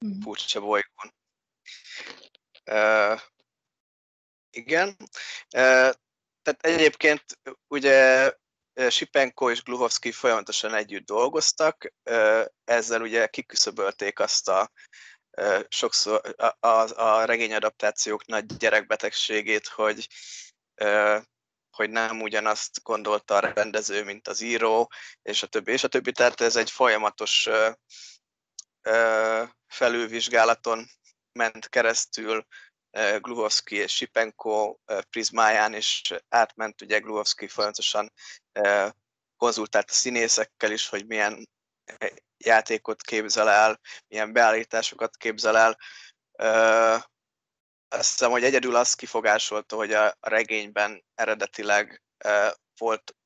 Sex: male